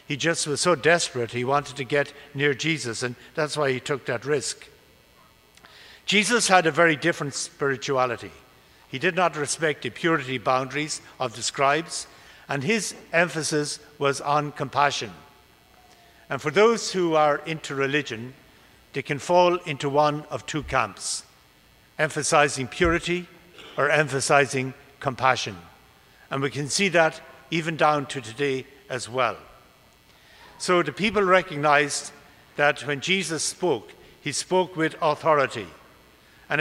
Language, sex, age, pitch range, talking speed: English, male, 60-79, 135-165 Hz, 140 wpm